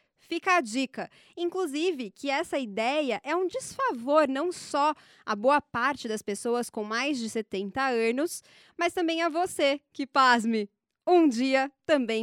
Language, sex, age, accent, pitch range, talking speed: Portuguese, female, 20-39, Brazilian, 225-300 Hz, 150 wpm